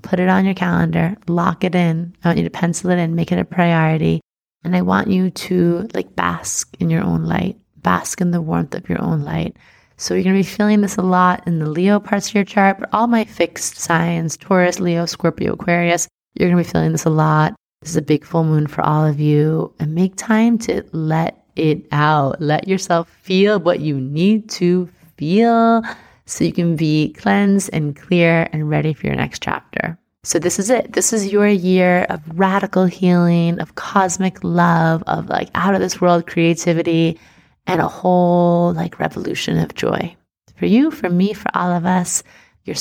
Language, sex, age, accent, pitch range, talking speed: English, female, 20-39, American, 165-195 Hz, 200 wpm